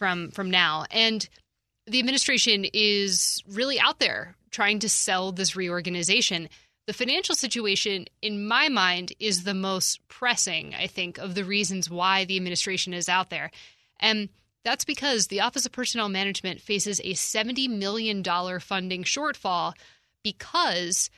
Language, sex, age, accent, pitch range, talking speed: English, female, 20-39, American, 185-220 Hz, 145 wpm